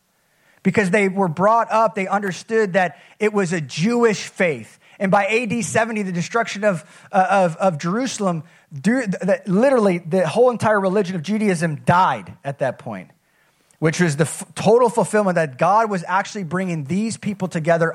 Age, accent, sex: 30-49, American, male